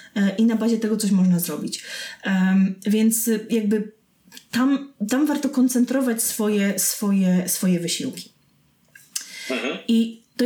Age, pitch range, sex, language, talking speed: 20-39, 195-235 Hz, female, Polish, 105 wpm